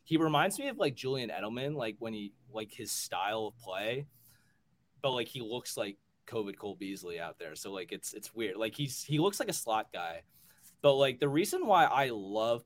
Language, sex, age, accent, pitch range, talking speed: English, male, 20-39, American, 110-150 Hz, 220 wpm